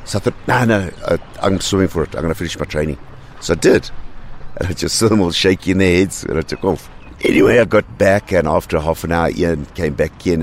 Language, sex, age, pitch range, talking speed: English, male, 60-79, 80-100 Hz, 255 wpm